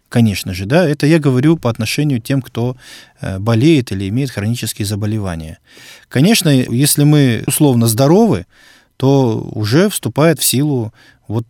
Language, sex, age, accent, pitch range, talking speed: Russian, male, 20-39, native, 110-140 Hz, 140 wpm